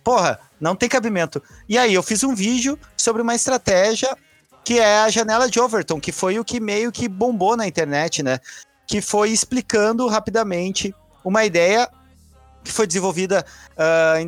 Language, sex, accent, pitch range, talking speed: Portuguese, male, Brazilian, 155-230 Hz, 165 wpm